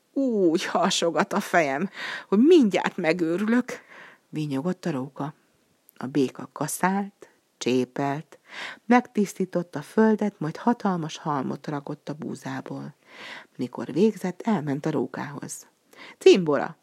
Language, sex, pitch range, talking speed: Hungarian, female, 145-195 Hz, 105 wpm